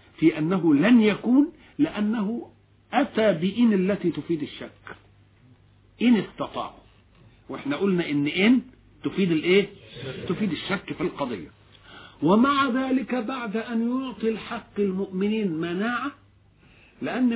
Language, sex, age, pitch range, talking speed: English, male, 50-69, 150-235 Hz, 105 wpm